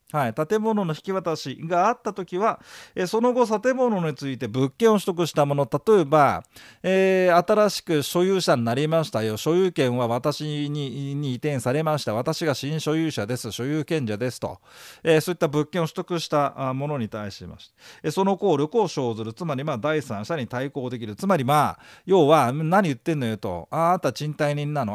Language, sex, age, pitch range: Japanese, male, 40-59, 125-185 Hz